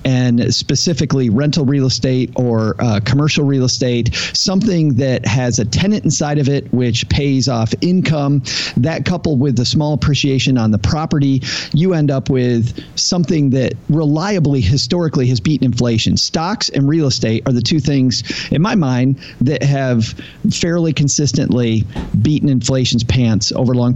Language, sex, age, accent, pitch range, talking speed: English, male, 40-59, American, 125-160 Hz, 155 wpm